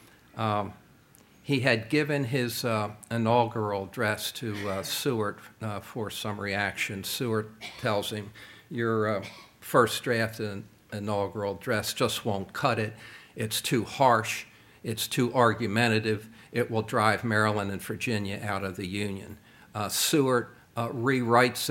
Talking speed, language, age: 135 wpm, English, 60-79